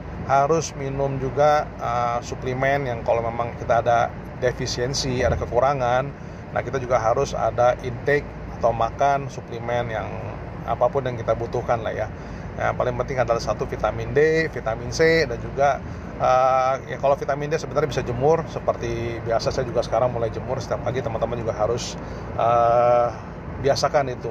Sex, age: male, 30-49